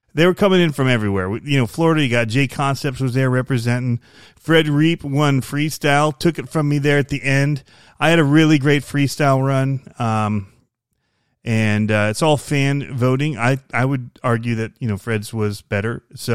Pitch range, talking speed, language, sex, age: 110-135 Hz, 195 wpm, English, male, 30-49